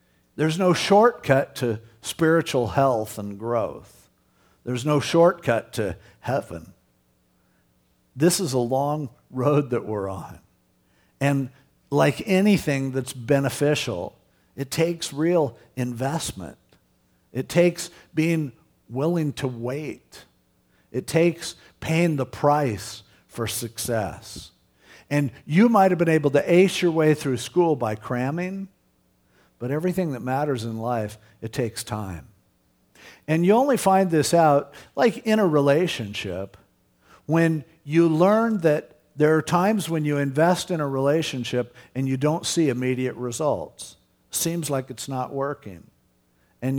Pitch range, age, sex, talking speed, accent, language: 105-160 Hz, 50-69, male, 130 wpm, American, English